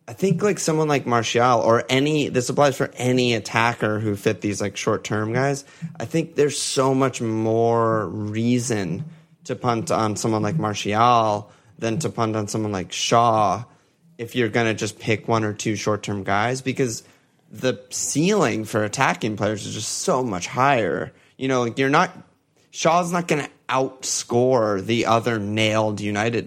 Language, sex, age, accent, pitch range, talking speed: English, male, 20-39, American, 110-135 Hz, 170 wpm